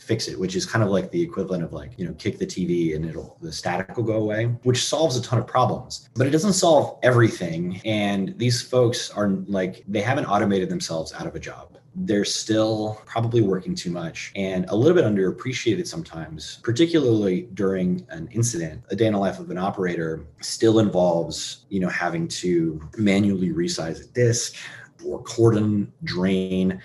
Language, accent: English, American